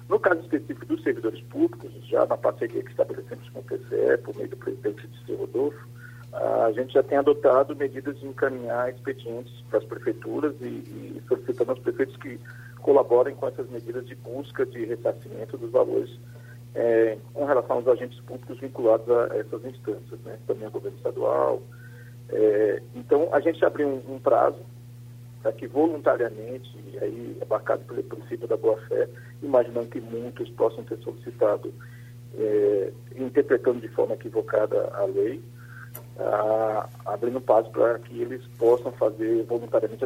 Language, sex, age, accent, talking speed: Portuguese, male, 50-69, Brazilian, 155 wpm